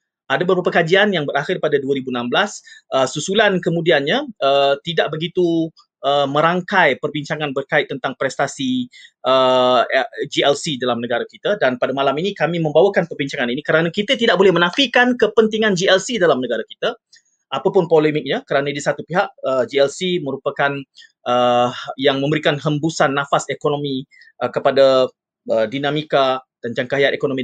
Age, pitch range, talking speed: 30-49, 140-190 Hz, 140 wpm